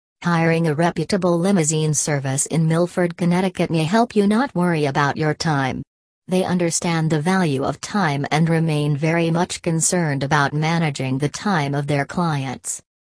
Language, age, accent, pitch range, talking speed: English, 40-59, American, 150-180 Hz, 155 wpm